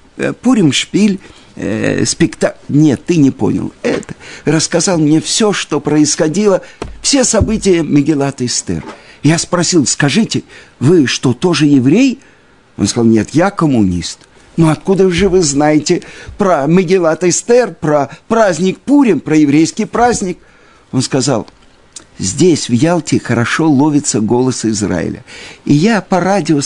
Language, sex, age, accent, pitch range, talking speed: Russian, male, 50-69, native, 145-200 Hz, 125 wpm